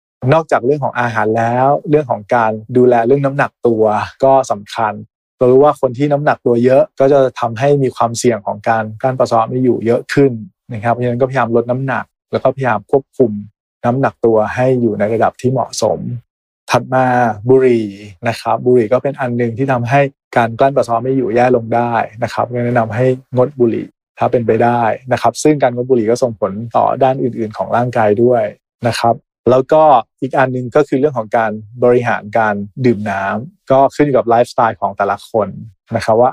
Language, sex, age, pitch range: Thai, male, 20-39, 115-135 Hz